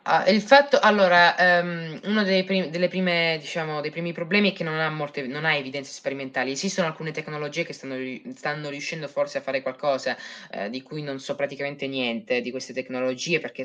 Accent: native